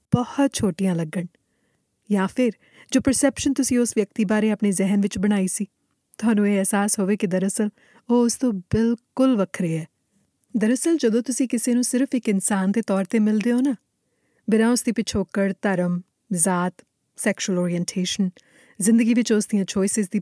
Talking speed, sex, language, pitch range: 165 wpm, female, Punjabi, 195-240 Hz